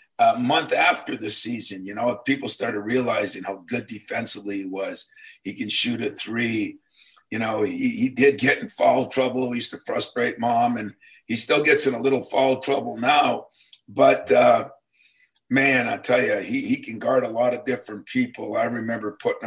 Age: 50-69